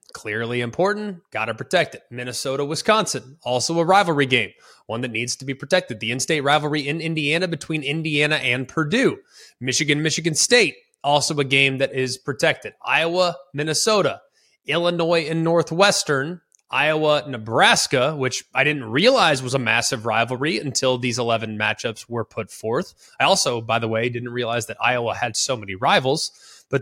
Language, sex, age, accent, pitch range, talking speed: English, male, 20-39, American, 130-170 Hz, 150 wpm